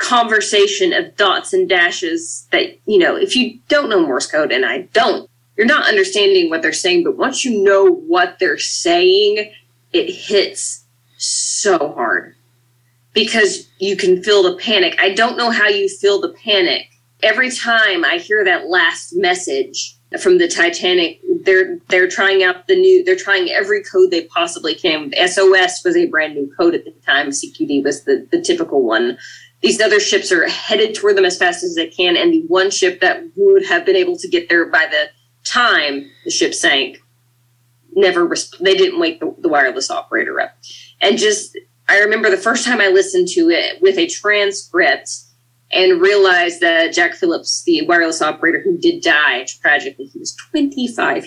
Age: 20-39